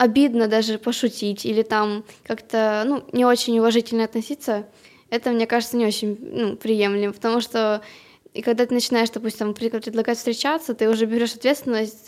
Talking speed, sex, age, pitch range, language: 155 wpm, female, 10-29, 215-235 Hz, Ukrainian